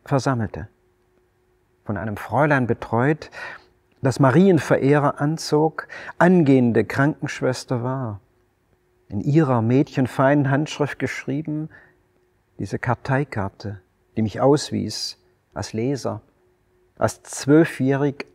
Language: German